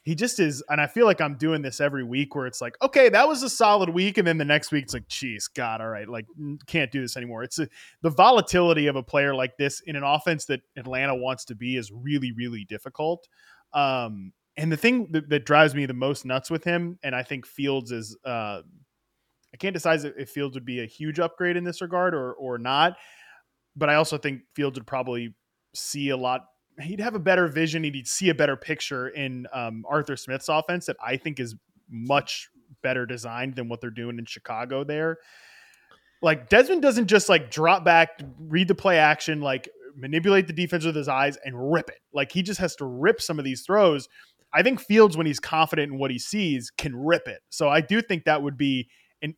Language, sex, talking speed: English, male, 230 wpm